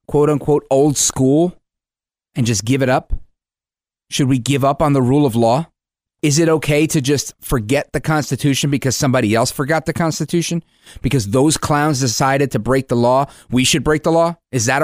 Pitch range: 125-170 Hz